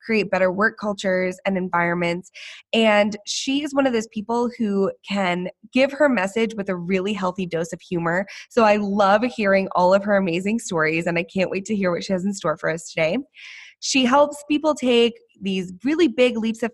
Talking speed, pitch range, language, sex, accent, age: 205 wpm, 185-240 Hz, English, female, American, 20-39